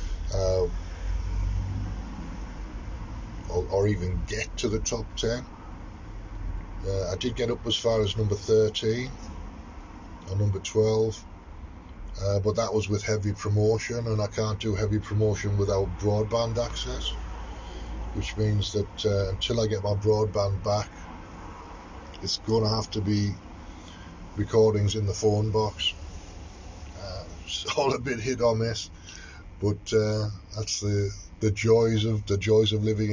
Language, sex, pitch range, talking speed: English, male, 85-110 Hz, 140 wpm